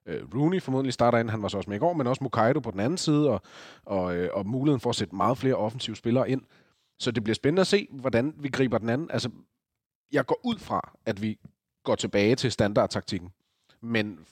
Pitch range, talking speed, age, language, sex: 105-130 Hz, 220 wpm, 30-49, Danish, male